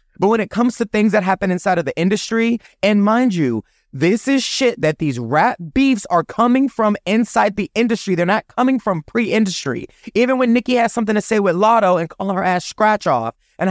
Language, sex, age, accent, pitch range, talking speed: English, male, 20-39, American, 170-220 Hz, 215 wpm